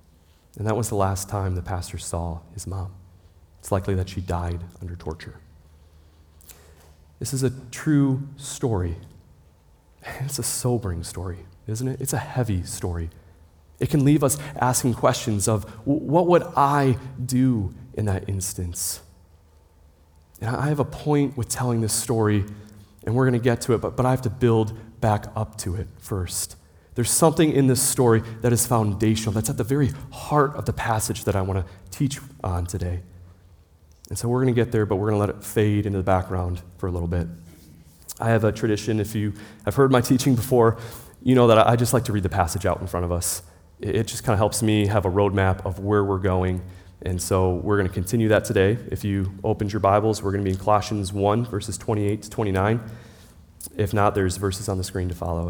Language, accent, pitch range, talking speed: English, American, 90-120 Hz, 205 wpm